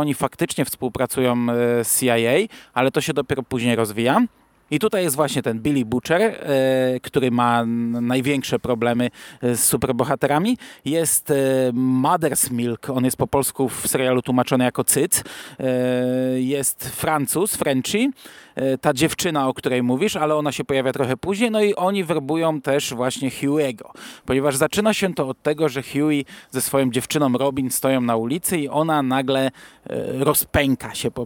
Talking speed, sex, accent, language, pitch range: 150 wpm, male, native, Polish, 125-150 Hz